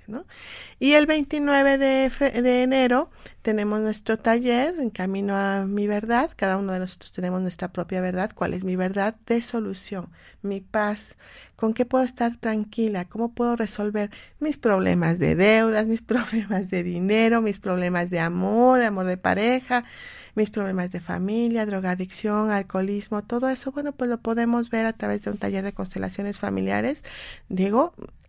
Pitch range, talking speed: 195-240 Hz, 160 wpm